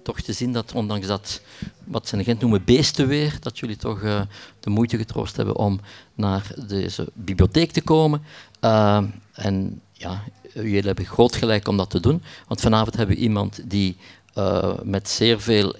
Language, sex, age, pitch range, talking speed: Dutch, male, 50-69, 95-115 Hz, 180 wpm